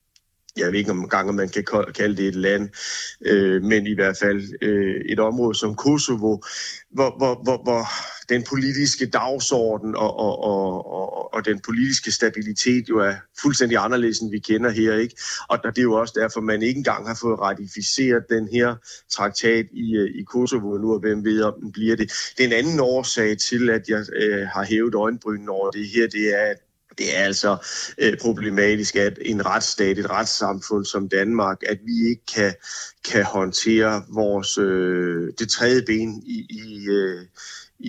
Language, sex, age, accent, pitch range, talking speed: Danish, male, 30-49, native, 100-115 Hz, 180 wpm